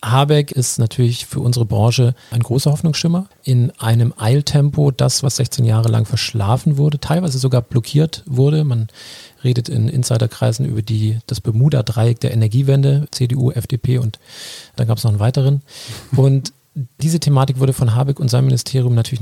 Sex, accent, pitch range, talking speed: male, German, 120-140 Hz, 160 wpm